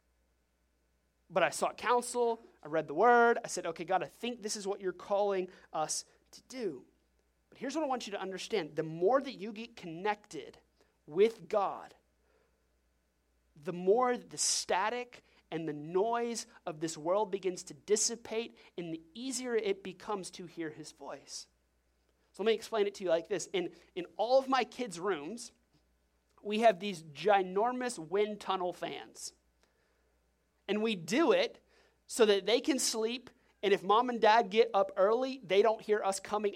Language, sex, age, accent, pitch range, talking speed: English, male, 30-49, American, 180-245 Hz, 170 wpm